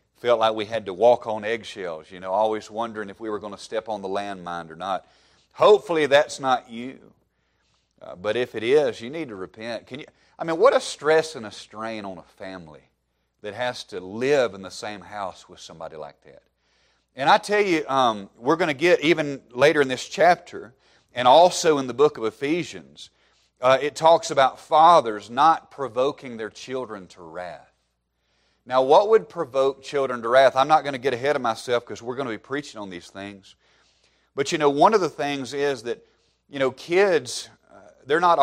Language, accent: English, American